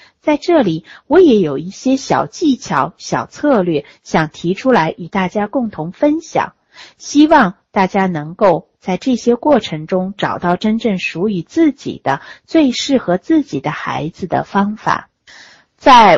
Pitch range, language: 170-265 Hz, Chinese